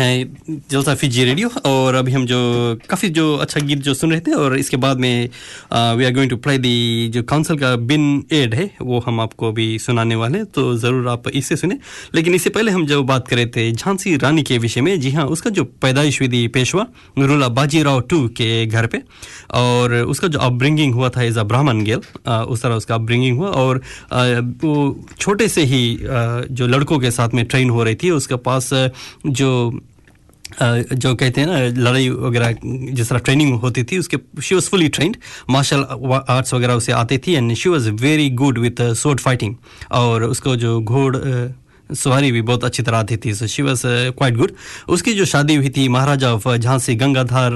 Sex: male